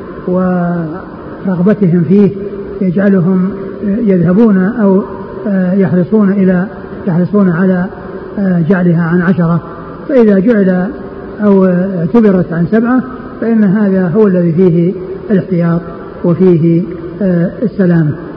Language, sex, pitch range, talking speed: Arabic, male, 175-205 Hz, 85 wpm